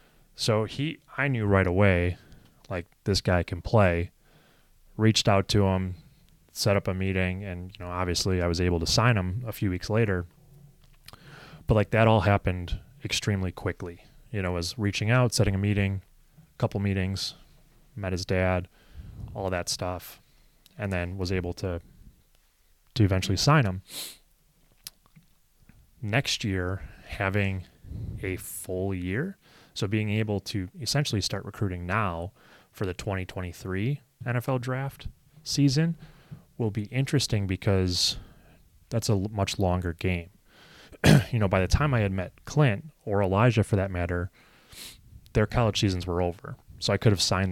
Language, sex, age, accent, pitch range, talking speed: English, male, 20-39, American, 90-115 Hz, 155 wpm